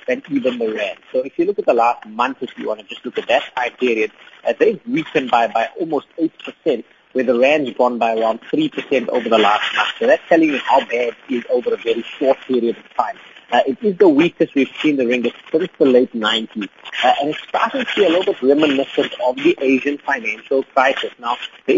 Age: 30-49